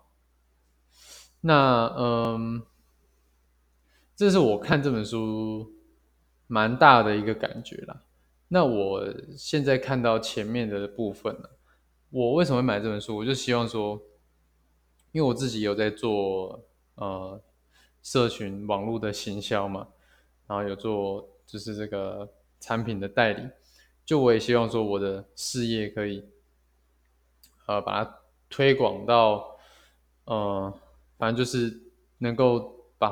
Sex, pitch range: male, 100-120 Hz